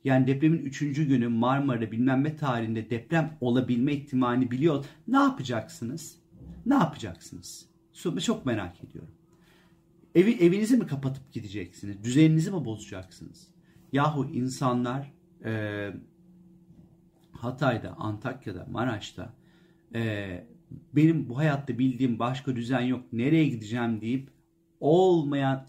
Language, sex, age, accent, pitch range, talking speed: Turkish, male, 40-59, native, 115-155 Hz, 105 wpm